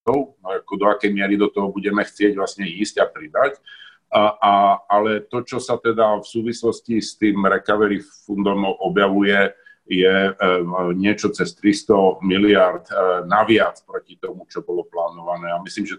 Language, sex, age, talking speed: Slovak, male, 50-69, 145 wpm